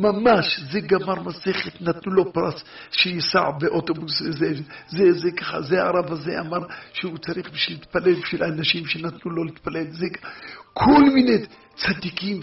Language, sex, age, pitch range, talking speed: Hebrew, male, 50-69, 150-180 Hz, 150 wpm